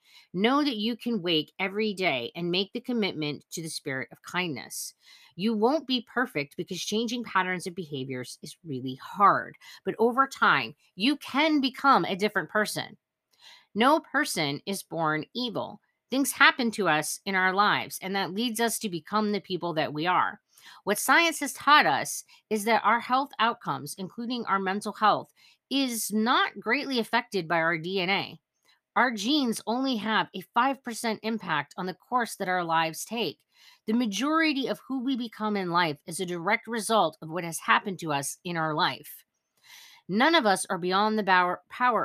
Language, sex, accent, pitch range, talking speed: English, female, American, 175-235 Hz, 175 wpm